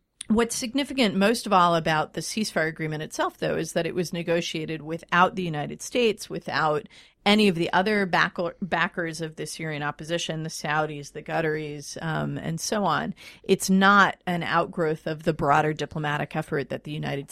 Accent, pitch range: American, 155-200 Hz